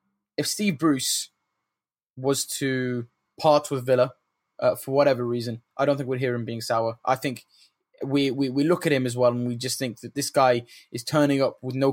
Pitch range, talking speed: 120-145 Hz, 210 wpm